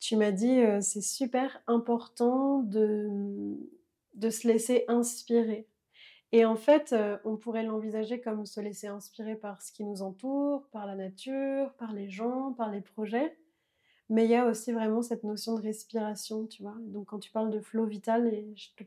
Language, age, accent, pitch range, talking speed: French, 20-39, French, 210-240 Hz, 190 wpm